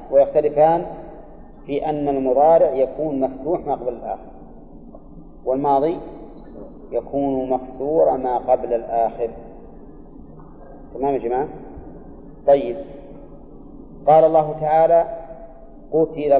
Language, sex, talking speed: Arabic, male, 85 wpm